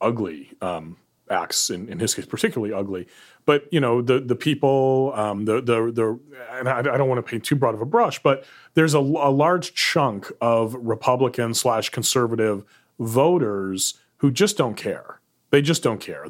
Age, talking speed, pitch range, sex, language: 30-49, 185 wpm, 115-140 Hz, male, English